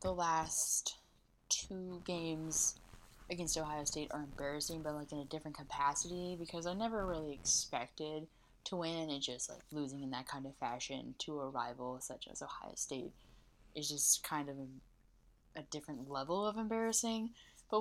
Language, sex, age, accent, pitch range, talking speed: English, female, 10-29, American, 140-175 Hz, 160 wpm